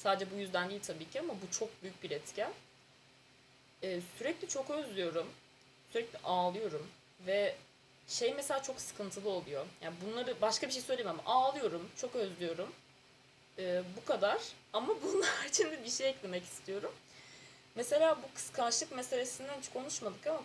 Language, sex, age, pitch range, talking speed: Turkish, female, 20-39, 170-235 Hz, 150 wpm